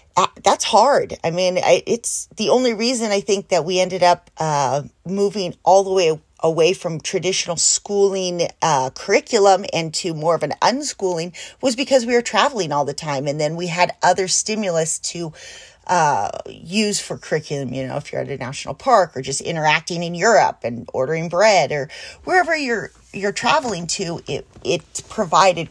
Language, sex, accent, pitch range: English, female, American, 160-210 Hz